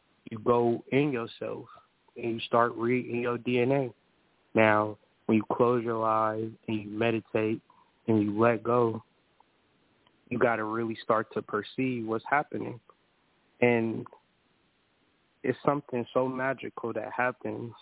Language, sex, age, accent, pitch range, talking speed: English, male, 20-39, American, 105-120 Hz, 130 wpm